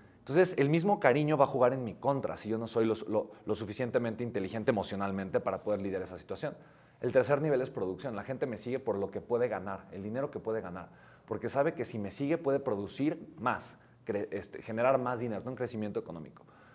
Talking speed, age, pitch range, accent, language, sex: 220 wpm, 30-49, 110-145 Hz, Mexican, Spanish, male